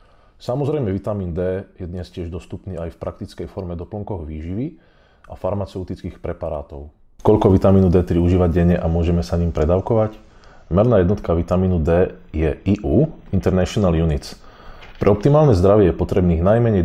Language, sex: Slovak, male